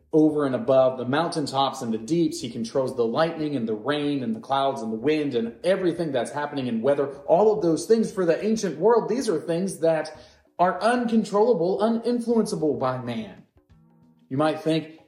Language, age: English, 30-49